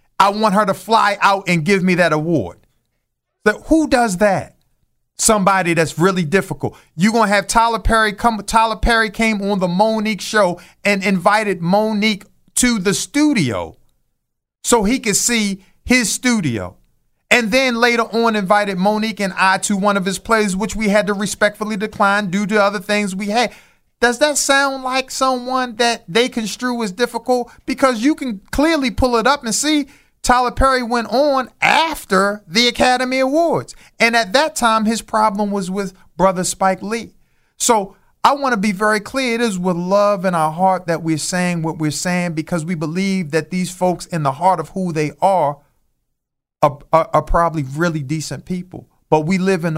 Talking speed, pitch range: 180 wpm, 175-230 Hz